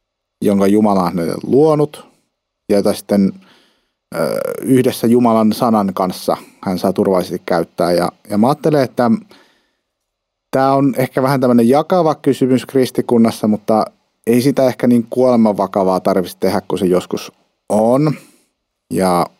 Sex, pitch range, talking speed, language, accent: male, 105-130 Hz, 135 wpm, Finnish, native